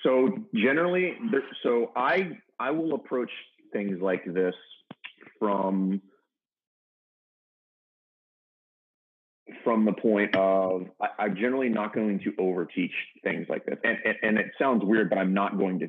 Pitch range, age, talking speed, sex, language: 90-105 Hz, 30-49, 135 wpm, male, English